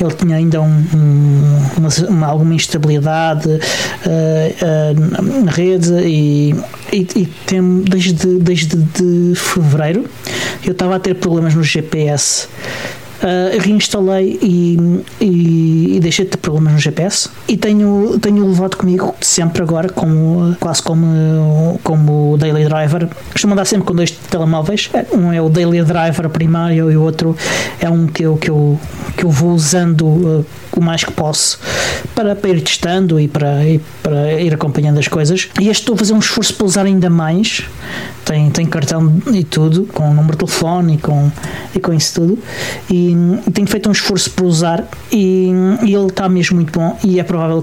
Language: Portuguese